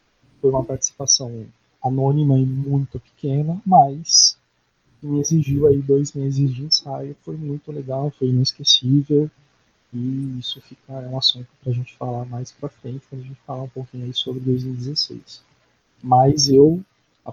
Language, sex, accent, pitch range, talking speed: Portuguese, male, Brazilian, 120-140 Hz, 150 wpm